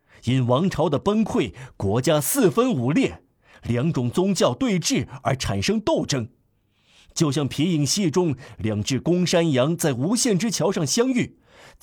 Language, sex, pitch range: Chinese, male, 125-200 Hz